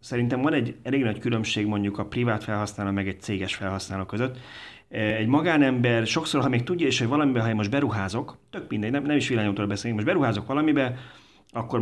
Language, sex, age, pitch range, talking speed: Hungarian, male, 30-49, 105-135 Hz, 200 wpm